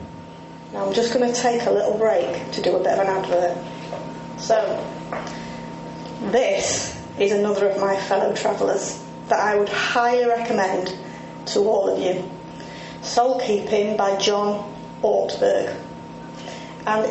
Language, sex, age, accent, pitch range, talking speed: English, female, 30-49, British, 195-240 Hz, 135 wpm